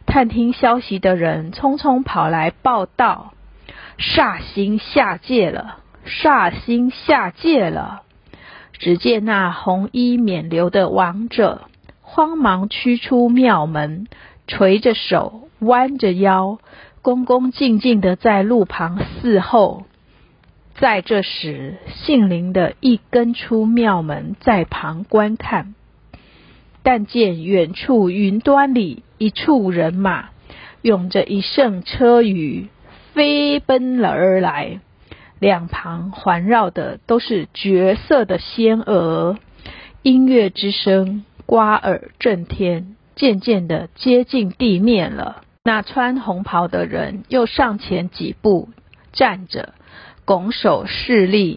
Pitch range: 190-245 Hz